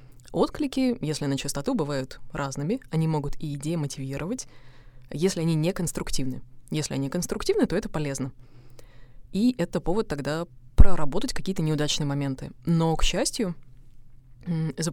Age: 20-39